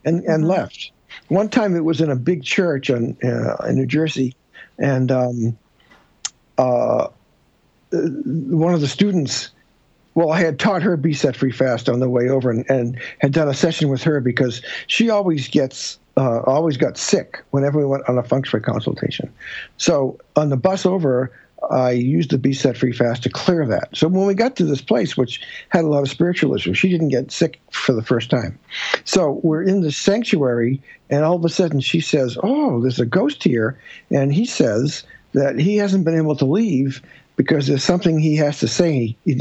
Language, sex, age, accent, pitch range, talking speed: English, male, 60-79, American, 130-170 Hz, 195 wpm